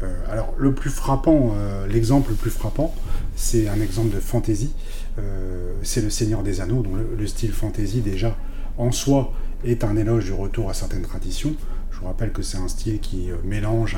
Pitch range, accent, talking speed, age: 100-125 Hz, French, 180 wpm, 30-49